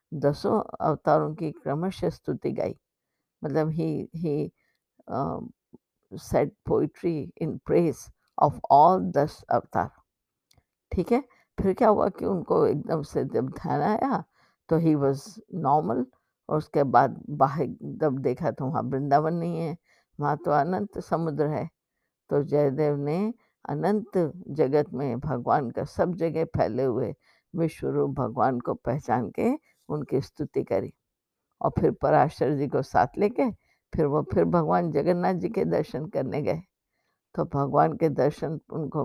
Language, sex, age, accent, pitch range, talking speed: Hindi, female, 50-69, native, 145-185 Hz, 140 wpm